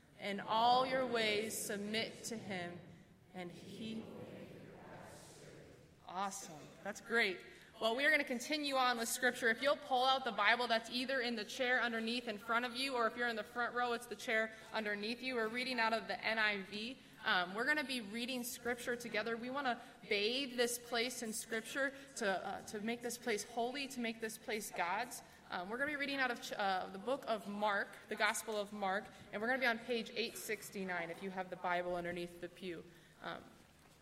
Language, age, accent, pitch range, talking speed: English, 20-39, American, 195-235 Hz, 205 wpm